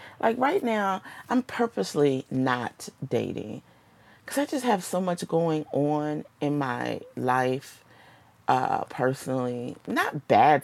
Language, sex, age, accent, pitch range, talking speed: English, female, 40-59, American, 130-180 Hz, 125 wpm